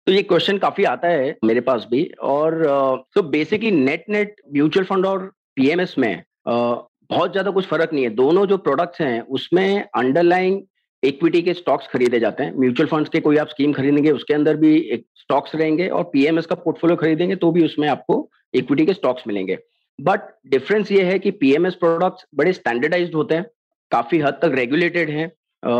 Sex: male